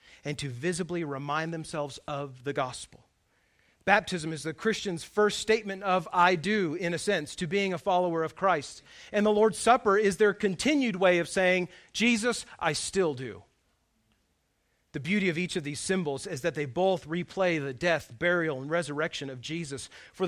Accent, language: American, English